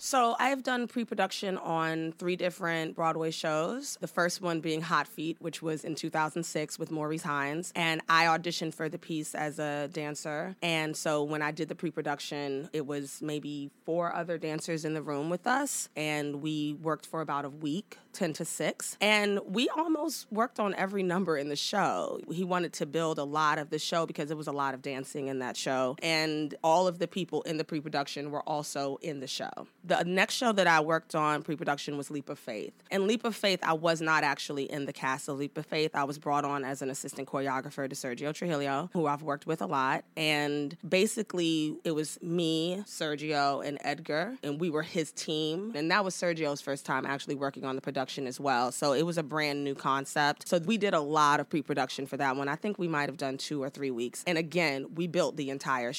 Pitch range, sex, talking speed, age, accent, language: 145-175 Hz, female, 220 wpm, 30-49, American, English